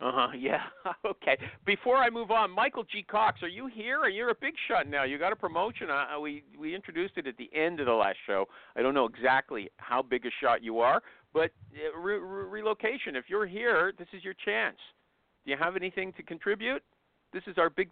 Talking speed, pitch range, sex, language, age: 220 wpm, 125-200 Hz, male, English, 50-69